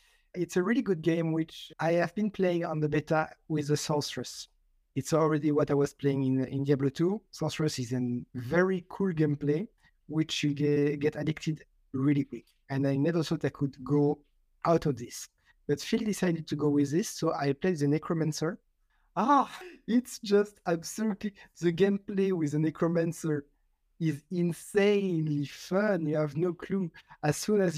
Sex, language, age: male, English, 50-69